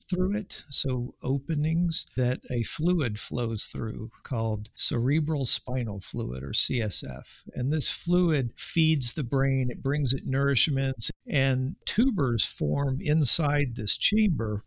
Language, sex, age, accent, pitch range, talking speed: English, male, 50-69, American, 120-145 Hz, 125 wpm